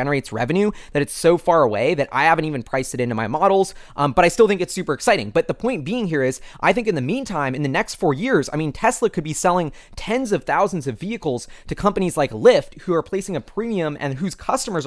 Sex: male